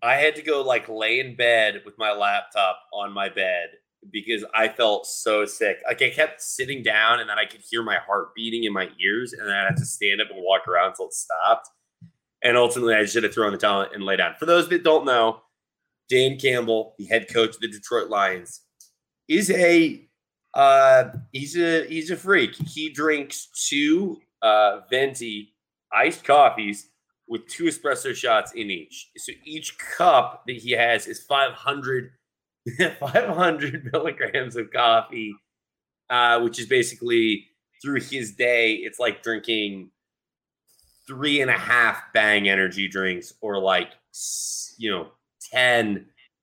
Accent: American